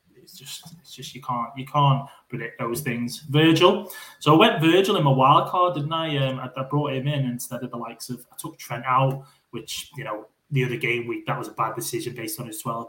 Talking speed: 245 wpm